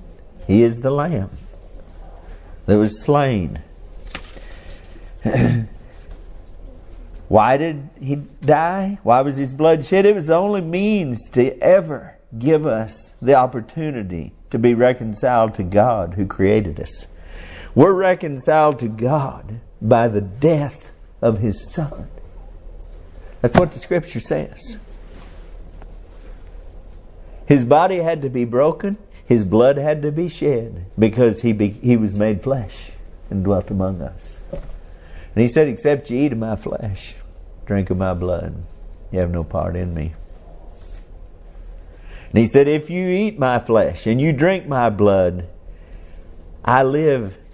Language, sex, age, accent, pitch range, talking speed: English, male, 50-69, American, 85-135 Hz, 135 wpm